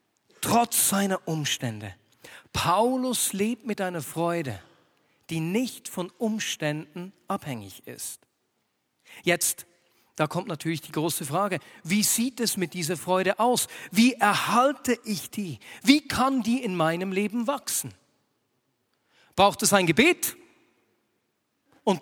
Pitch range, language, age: 150-230 Hz, German, 40-59